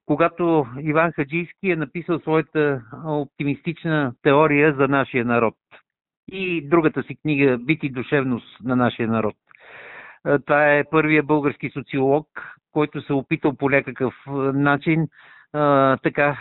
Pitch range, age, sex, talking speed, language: 140-180 Hz, 50-69, male, 120 wpm, Bulgarian